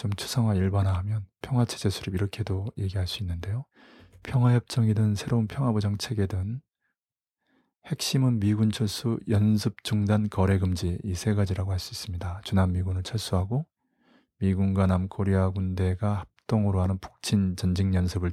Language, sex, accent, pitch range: Korean, male, native, 95-115 Hz